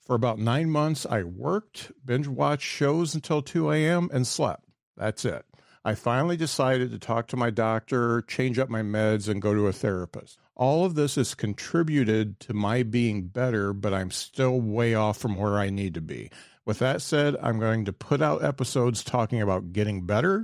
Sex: male